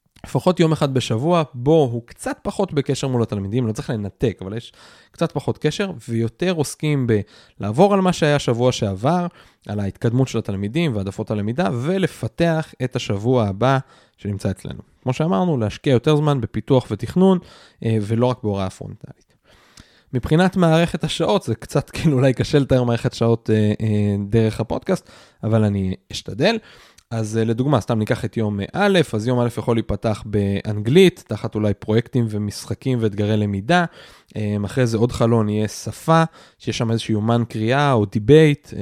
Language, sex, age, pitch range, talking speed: Hebrew, male, 20-39, 110-150 Hz, 150 wpm